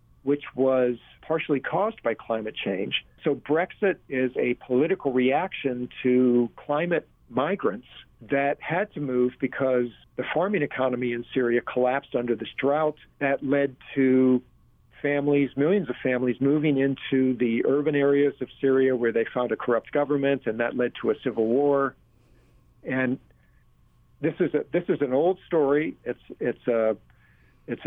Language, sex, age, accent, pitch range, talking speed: English, male, 50-69, American, 120-145 Hz, 145 wpm